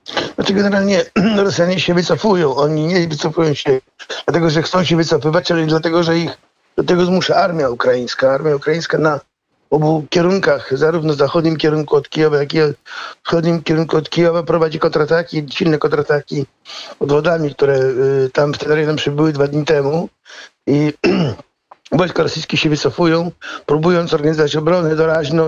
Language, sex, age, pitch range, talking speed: Polish, male, 50-69, 150-170 Hz, 150 wpm